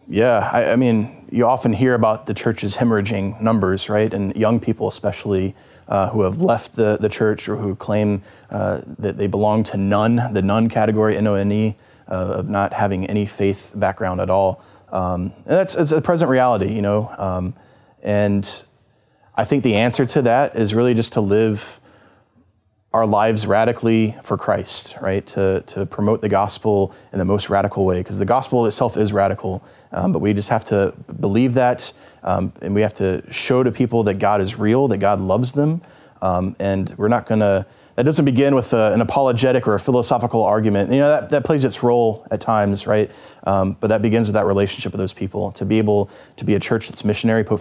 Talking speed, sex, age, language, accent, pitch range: 200 wpm, male, 20-39, English, American, 100-115 Hz